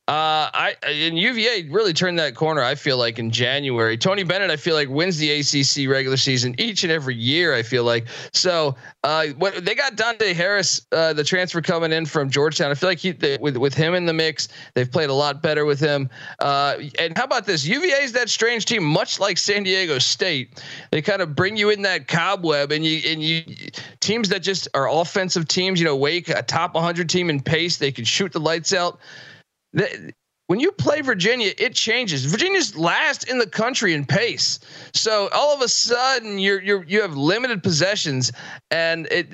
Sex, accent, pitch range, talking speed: male, American, 140-180 Hz, 205 wpm